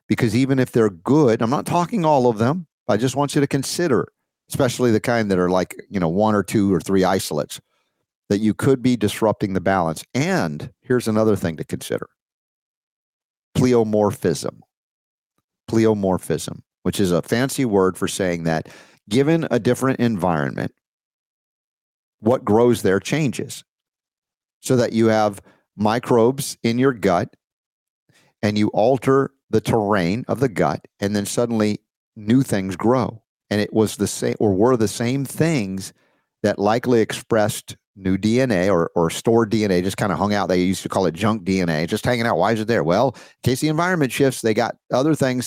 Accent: American